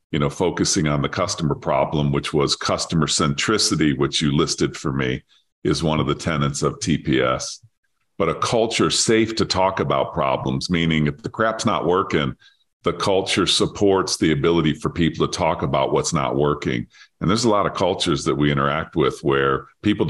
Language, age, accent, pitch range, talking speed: English, 50-69, American, 75-100 Hz, 185 wpm